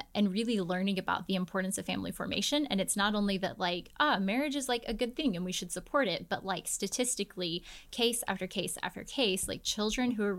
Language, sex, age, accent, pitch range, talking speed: English, female, 10-29, American, 185-220 Hz, 225 wpm